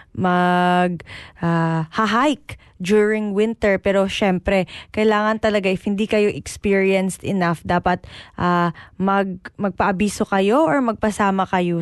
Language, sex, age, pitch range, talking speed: Filipino, female, 20-39, 200-260 Hz, 115 wpm